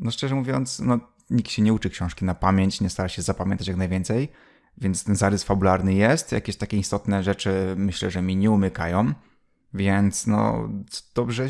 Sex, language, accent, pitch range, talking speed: male, Polish, native, 95-115 Hz, 175 wpm